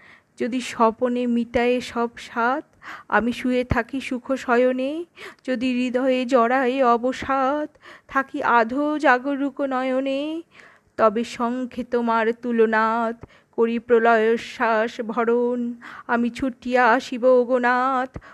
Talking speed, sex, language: 80 wpm, female, Bengali